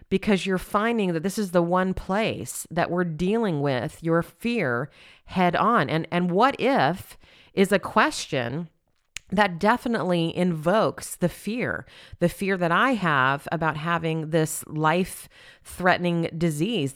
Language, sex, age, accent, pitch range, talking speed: English, female, 40-59, American, 155-190 Hz, 140 wpm